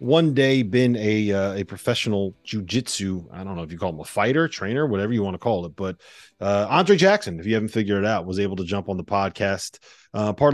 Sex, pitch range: male, 100-135 Hz